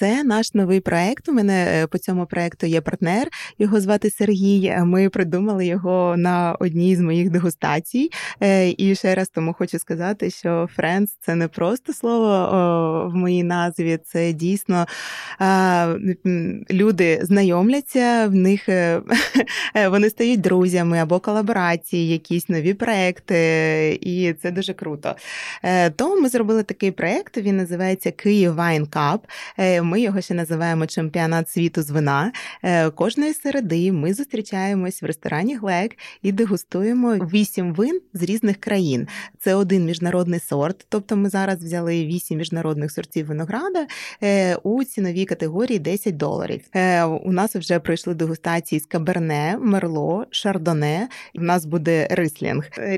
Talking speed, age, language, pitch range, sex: 130 wpm, 20-39, Ukrainian, 170-205 Hz, female